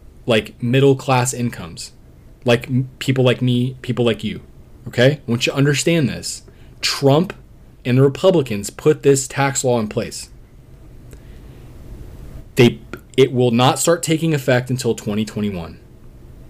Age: 20-39